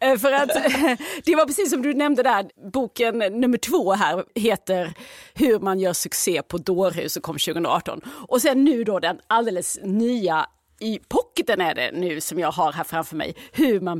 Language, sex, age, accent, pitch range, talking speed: Swedish, female, 30-49, native, 180-255 Hz, 185 wpm